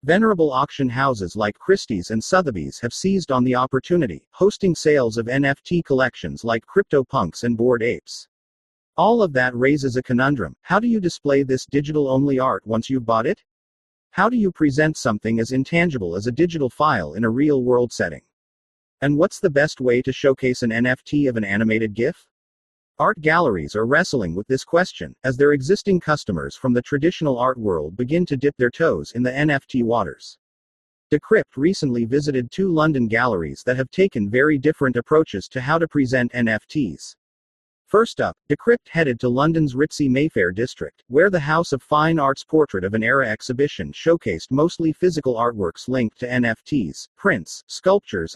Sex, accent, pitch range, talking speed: male, American, 120-155 Hz, 170 wpm